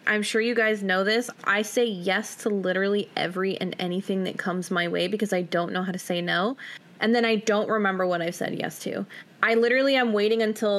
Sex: female